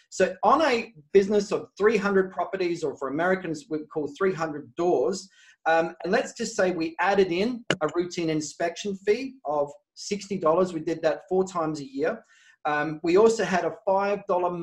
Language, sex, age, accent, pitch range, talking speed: English, male, 30-49, Australian, 160-210 Hz, 170 wpm